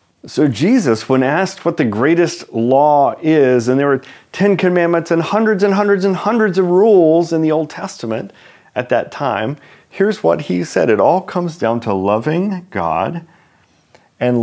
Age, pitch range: 40-59, 120-175 Hz